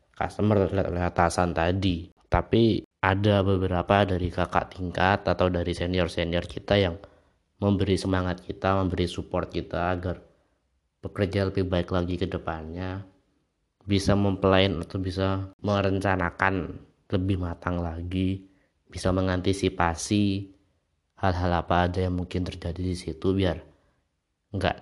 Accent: native